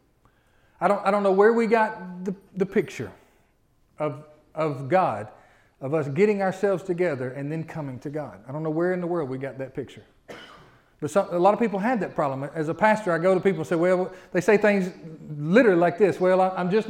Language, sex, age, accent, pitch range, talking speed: English, male, 40-59, American, 140-190 Hz, 225 wpm